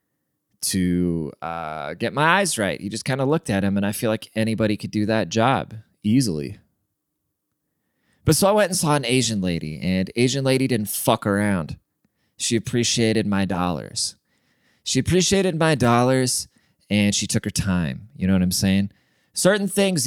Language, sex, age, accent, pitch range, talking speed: English, male, 20-39, American, 95-125 Hz, 175 wpm